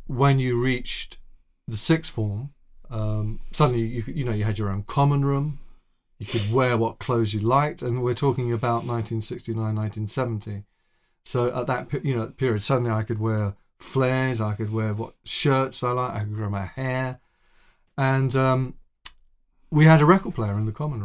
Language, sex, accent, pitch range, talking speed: English, male, British, 105-130 Hz, 180 wpm